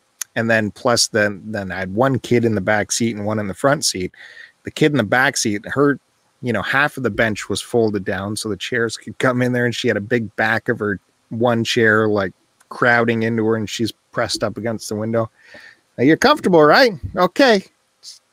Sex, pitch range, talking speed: male, 105-140 Hz, 225 wpm